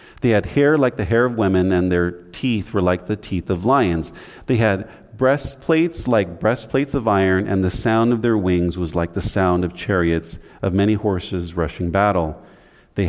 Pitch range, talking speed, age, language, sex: 90-120 Hz, 195 wpm, 40-59, English, male